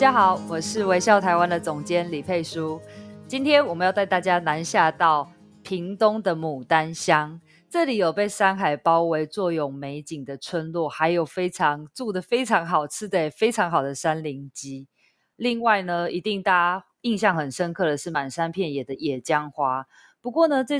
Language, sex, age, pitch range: Chinese, female, 20-39, 155-210 Hz